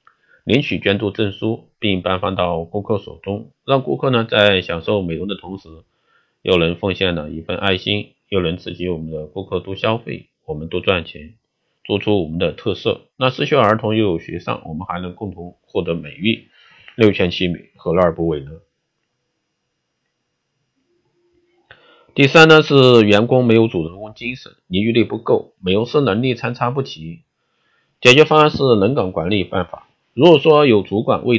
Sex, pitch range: male, 90-115 Hz